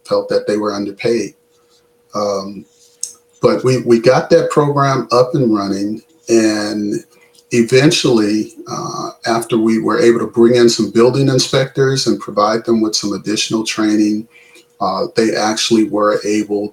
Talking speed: 145 wpm